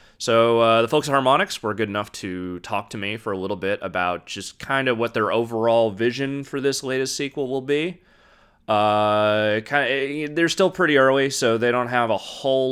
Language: English